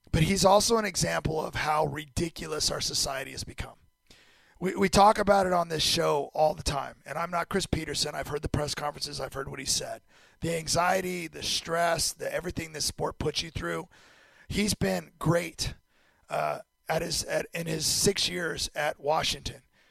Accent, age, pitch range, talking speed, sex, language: American, 40-59, 155-195 Hz, 185 wpm, male, English